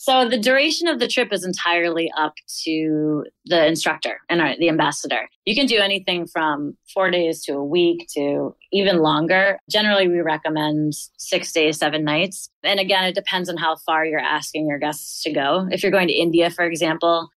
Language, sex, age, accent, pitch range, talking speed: English, female, 20-39, American, 155-190 Hz, 190 wpm